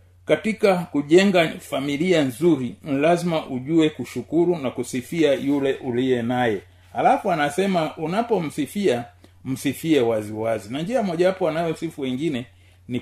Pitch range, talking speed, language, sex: 120-165 Hz, 115 wpm, Swahili, male